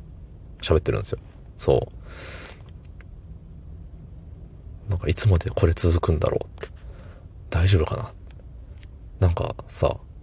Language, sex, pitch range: Japanese, male, 80-95 Hz